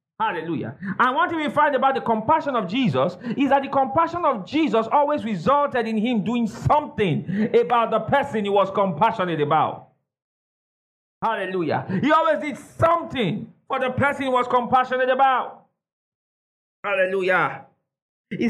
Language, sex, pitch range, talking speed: English, male, 180-260 Hz, 140 wpm